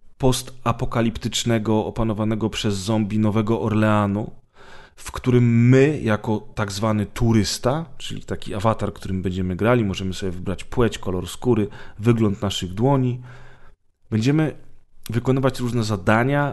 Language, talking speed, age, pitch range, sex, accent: Polish, 115 wpm, 30-49, 105-125 Hz, male, native